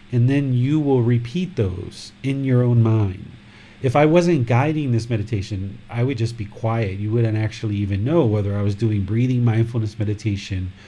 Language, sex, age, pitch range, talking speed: English, male, 40-59, 105-125 Hz, 180 wpm